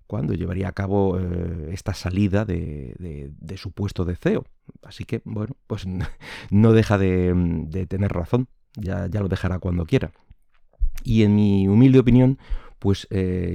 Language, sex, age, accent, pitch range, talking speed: Spanish, male, 30-49, Spanish, 90-105 Hz, 155 wpm